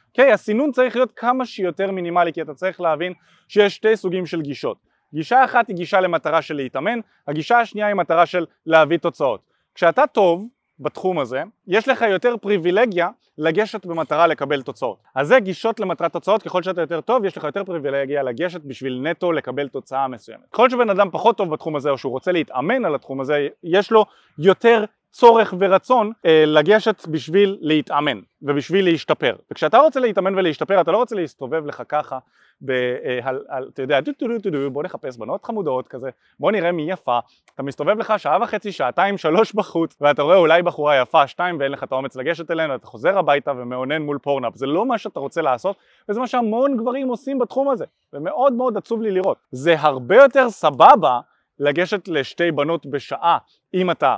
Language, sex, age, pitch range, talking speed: Hebrew, male, 30-49, 145-205 Hz, 180 wpm